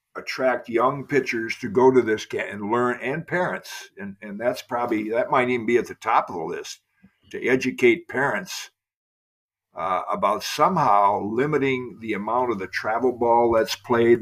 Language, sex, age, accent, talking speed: English, male, 60-79, American, 175 wpm